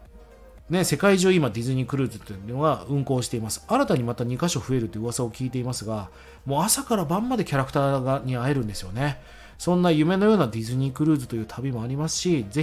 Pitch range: 120-180 Hz